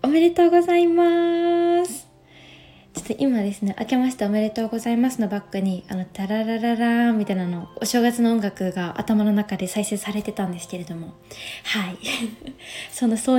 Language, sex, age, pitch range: Japanese, female, 20-39, 205-250 Hz